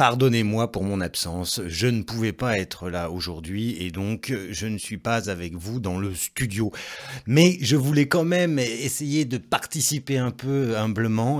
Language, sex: French, male